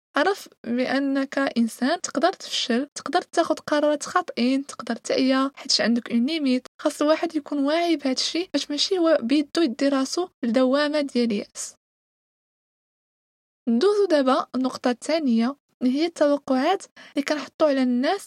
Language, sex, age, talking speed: Arabic, female, 20-39, 130 wpm